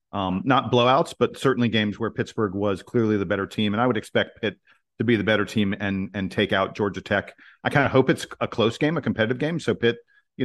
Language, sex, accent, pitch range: English, male, American, 105-125 Hz